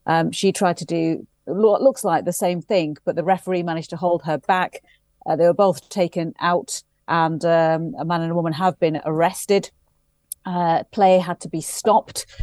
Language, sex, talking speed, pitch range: English, female, 200 wpm, 160-185 Hz